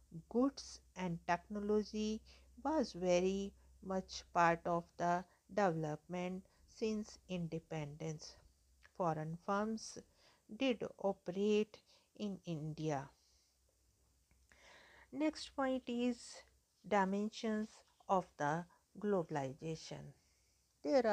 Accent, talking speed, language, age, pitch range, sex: Indian, 75 wpm, English, 50-69, 170-215 Hz, female